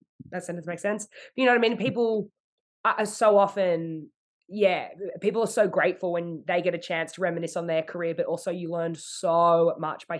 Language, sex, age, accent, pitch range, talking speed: English, female, 20-39, Australian, 160-195 Hz, 205 wpm